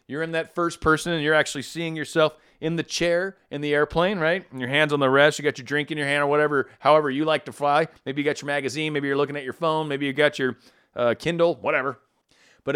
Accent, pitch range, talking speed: American, 135-170 Hz, 265 wpm